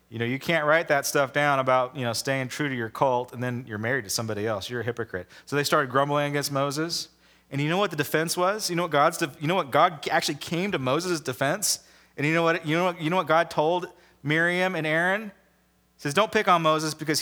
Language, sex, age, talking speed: English, male, 30-49, 250 wpm